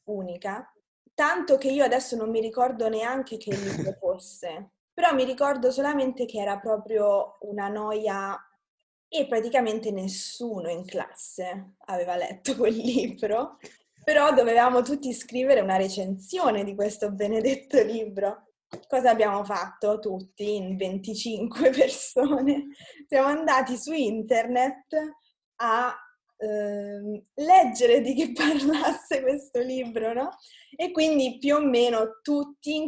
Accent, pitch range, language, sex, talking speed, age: native, 205-270 Hz, Italian, female, 120 wpm, 20-39